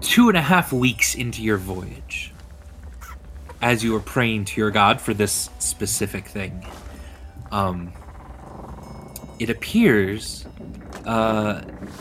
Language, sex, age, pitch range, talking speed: English, male, 30-49, 75-110 Hz, 115 wpm